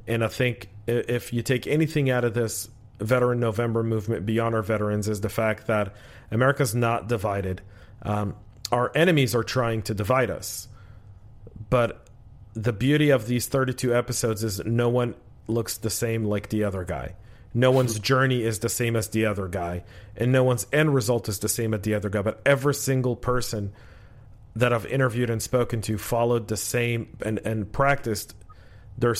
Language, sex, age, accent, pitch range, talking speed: English, male, 40-59, American, 105-125 Hz, 180 wpm